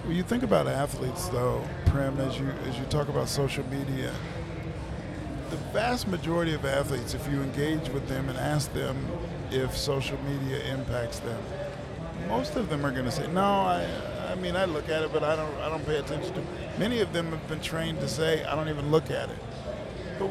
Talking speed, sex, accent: 215 wpm, male, American